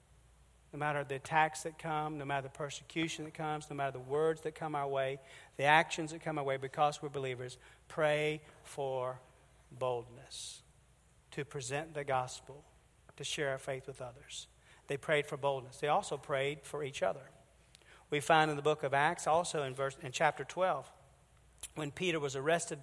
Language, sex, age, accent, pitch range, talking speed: English, male, 40-59, American, 140-165 Hz, 180 wpm